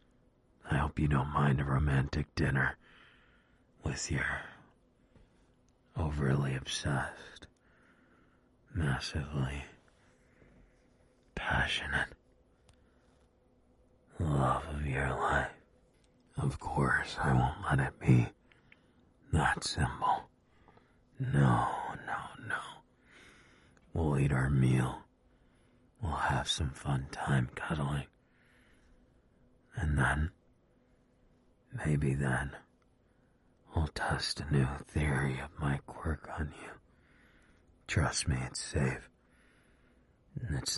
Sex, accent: male, American